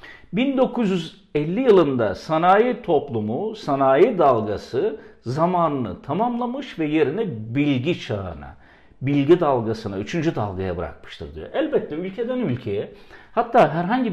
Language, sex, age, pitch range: Turkish, male, 50-69, 140-225 Hz